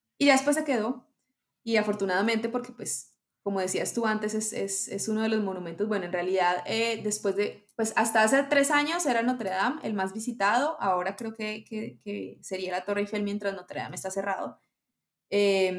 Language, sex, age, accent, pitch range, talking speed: Spanish, female, 20-39, Colombian, 195-235 Hz, 195 wpm